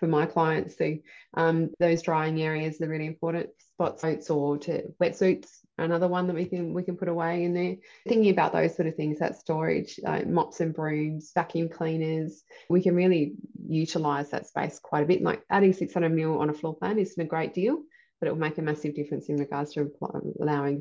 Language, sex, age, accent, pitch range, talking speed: English, female, 20-39, Australian, 160-185 Hz, 215 wpm